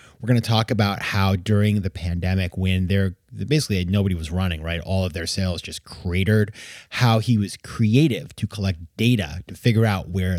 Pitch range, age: 95-125 Hz, 30-49